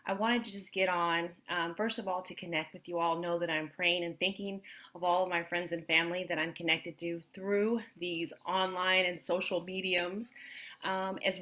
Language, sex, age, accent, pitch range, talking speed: English, female, 30-49, American, 180-210 Hz, 210 wpm